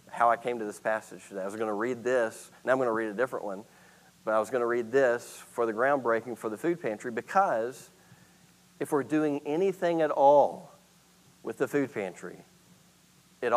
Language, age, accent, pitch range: English, 40-59, American, 120-175 Hz